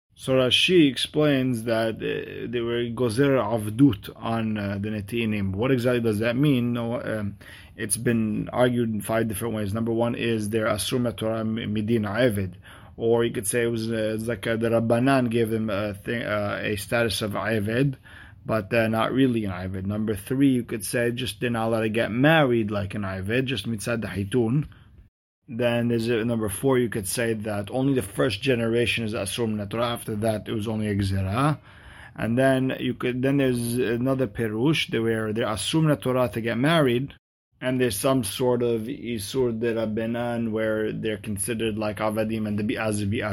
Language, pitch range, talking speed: English, 110-125 Hz, 180 wpm